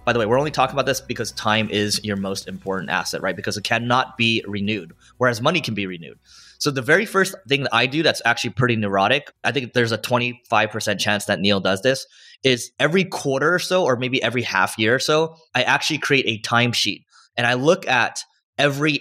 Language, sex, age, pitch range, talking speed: English, male, 20-39, 105-135 Hz, 220 wpm